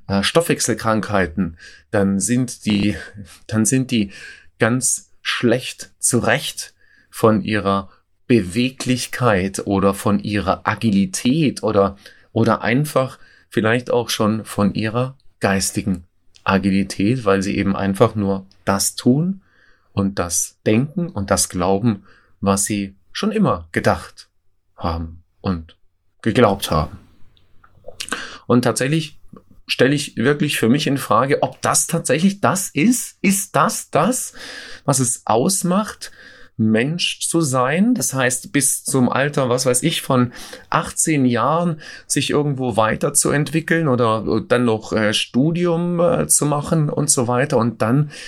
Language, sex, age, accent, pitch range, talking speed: German, male, 30-49, German, 100-140 Hz, 125 wpm